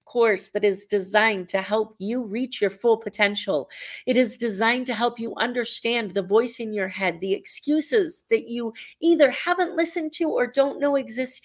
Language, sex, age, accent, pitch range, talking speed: English, female, 40-59, American, 205-290 Hz, 185 wpm